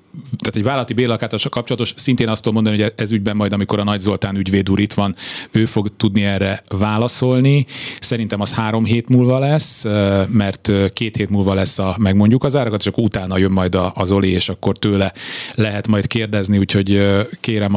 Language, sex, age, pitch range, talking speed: Hungarian, male, 30-49, 100-115 Hz, 185 wpm